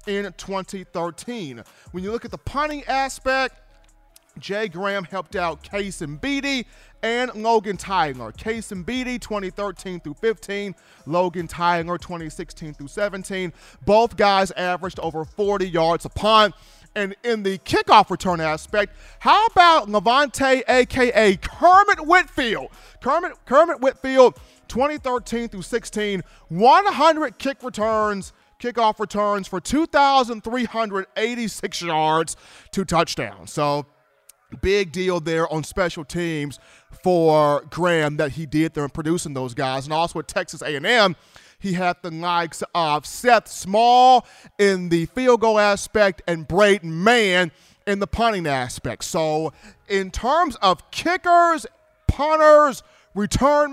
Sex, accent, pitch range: male, American, 170-245 Hz